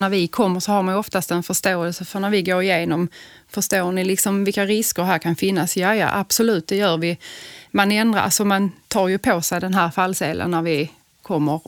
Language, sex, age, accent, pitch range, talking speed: Swedish, female, 30-49, native, 180-210 Hz, 215 wpm